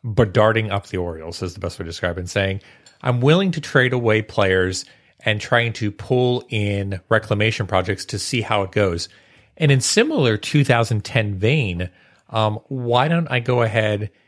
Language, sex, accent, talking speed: English, male, American, 180 wpm